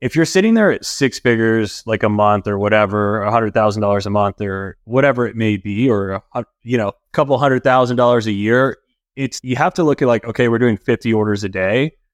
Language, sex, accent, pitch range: English, male, American, 105-130 Hz